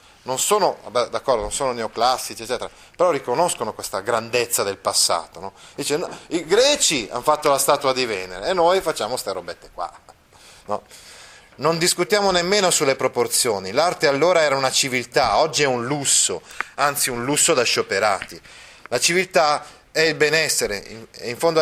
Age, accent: 30-49, native